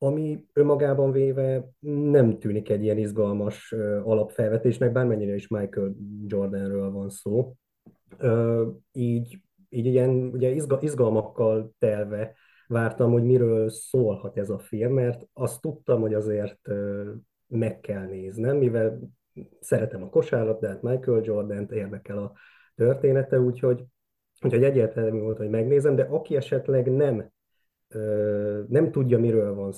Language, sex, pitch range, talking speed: Hungarian, male, 105-125 Hz, 125 wpm